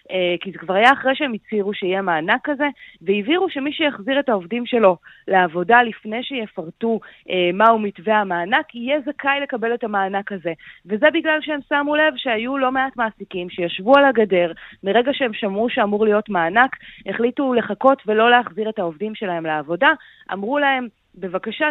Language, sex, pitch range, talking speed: Hebrew, female, 195-260 Hz, 165 wpm